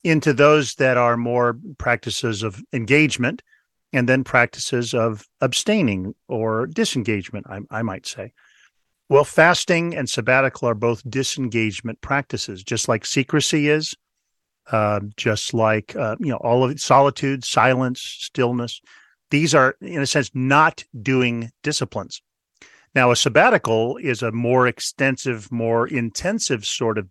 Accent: American